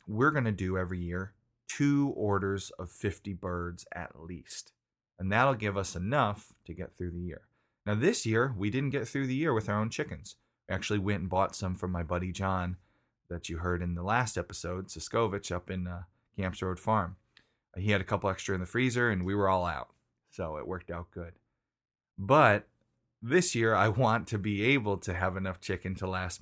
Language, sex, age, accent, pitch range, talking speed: English, male, 30-49, American, 95-115 Hz, 210 wpm